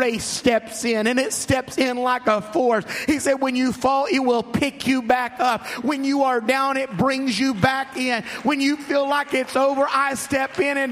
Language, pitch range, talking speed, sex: English, 170-275 Hz, 215 wpm, male